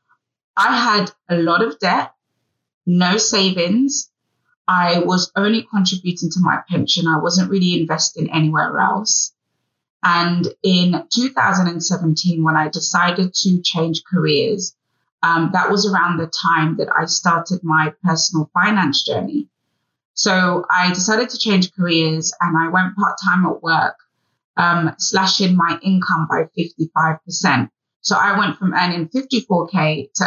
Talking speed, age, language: 135 wpm, 30-49, English